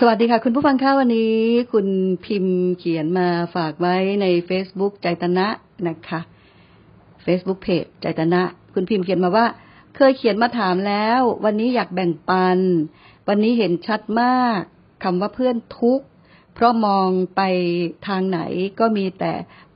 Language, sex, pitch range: Thai, female, 175-215 Hz